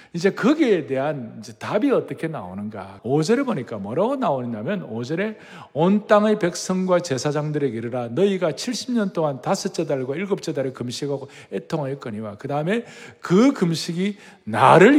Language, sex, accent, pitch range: Korean, male, native, 145-225 Hz